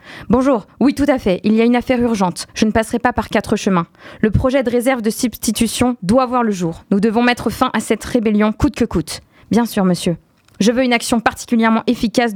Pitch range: 195-245 Hz